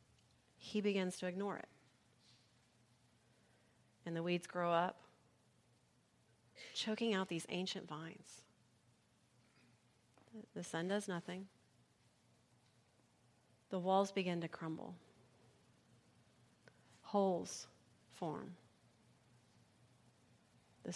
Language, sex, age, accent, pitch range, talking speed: English, female, 40-59, American, 130-195 Hz, 75 wpm